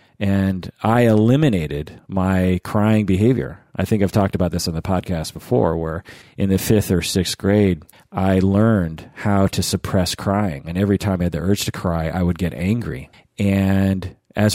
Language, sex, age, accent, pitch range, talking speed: English, male, 40-59, American, 90-115 Hz, 180 wpm